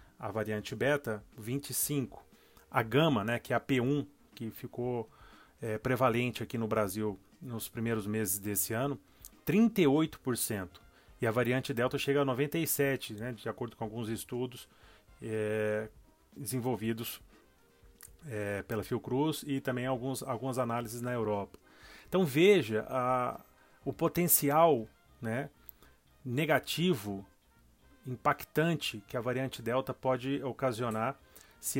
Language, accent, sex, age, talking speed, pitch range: Portuguese, Brazilian, male, 30-49, 110 wpm, 110-140 Hz